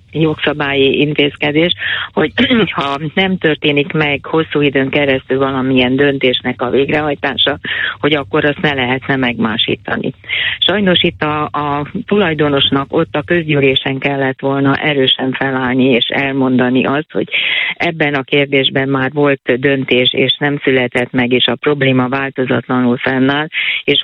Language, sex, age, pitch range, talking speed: Hungarian, female, 30-49, 130-150 Hz, 130 wpm